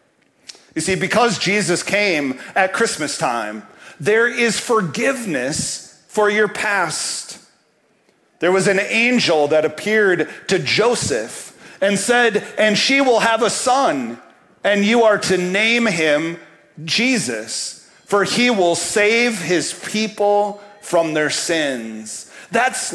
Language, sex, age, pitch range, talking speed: English, male, 40-59, 165-215 Hz, 125 wpm